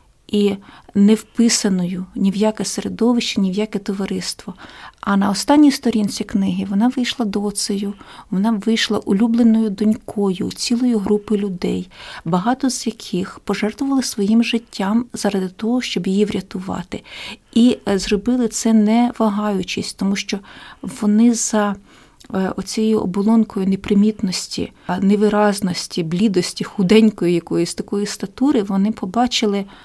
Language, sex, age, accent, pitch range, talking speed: Ukrainian, female, 40-59, native, 195-225 Hz, 115 wpm